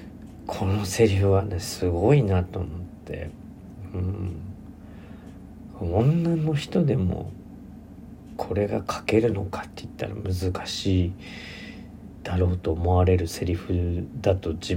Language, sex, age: Japanese, male, 40-59